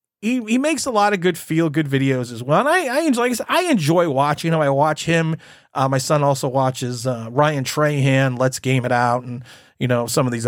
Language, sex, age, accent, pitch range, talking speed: English, male, 30-49, American, 135-190 Hz, 250 wpm